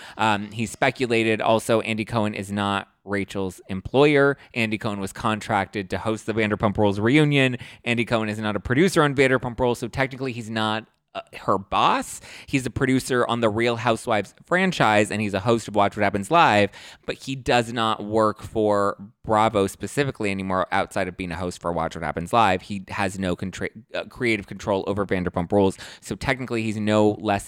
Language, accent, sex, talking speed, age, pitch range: English, American, male, 190 wpm, 20-39, 100-120 Hz